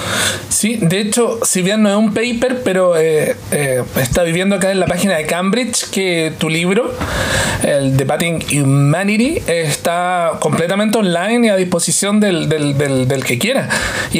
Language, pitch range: Spanish, 175-230 Hz